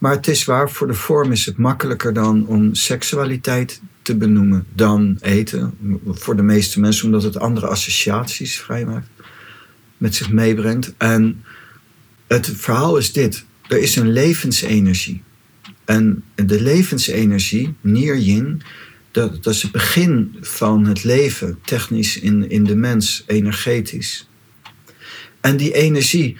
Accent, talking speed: Dutch, 135 wpm